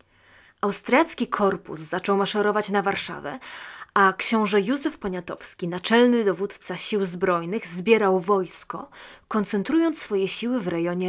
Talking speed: 115 wpm